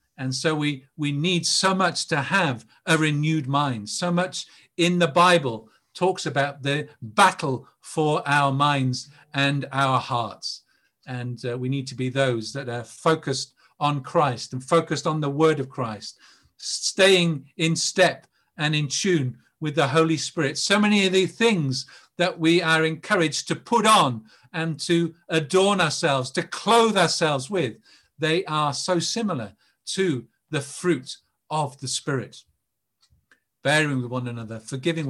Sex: male